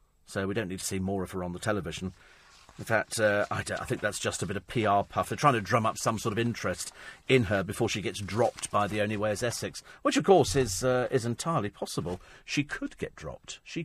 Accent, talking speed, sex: British, 260 wpm, male